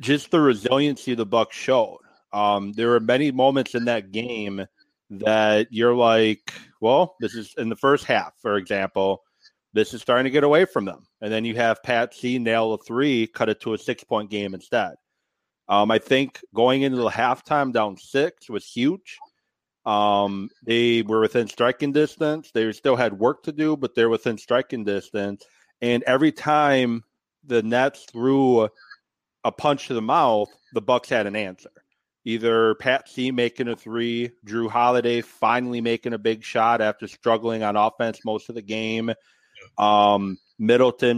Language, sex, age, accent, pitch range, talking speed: English, male, 30-49, American, 110-125 Hz, 170 wpm